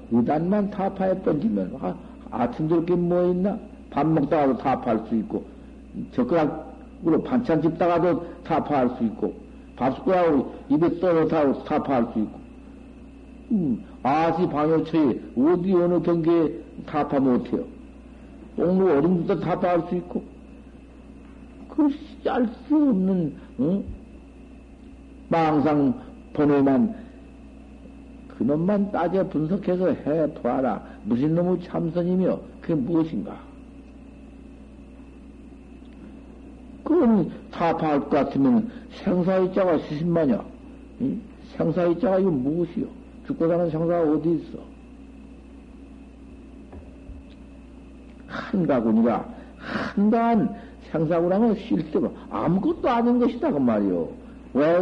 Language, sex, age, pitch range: Korean, male, 60-79, 165-255 Hz